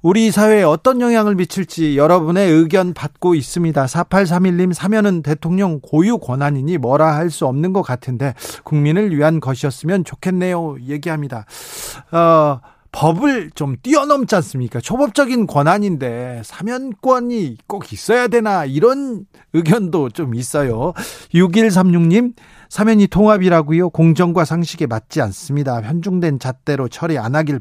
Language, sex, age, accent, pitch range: Korean, male, 40-59, native, 140-185 Hz